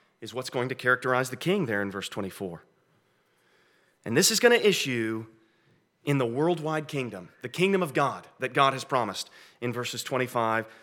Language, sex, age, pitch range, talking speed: English, male, 30-49, 125-175 Hz, 175 wpm